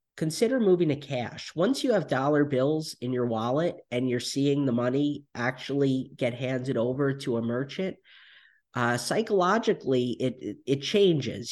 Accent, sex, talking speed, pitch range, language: American, male, 150 wpm, 120-145 Hz, English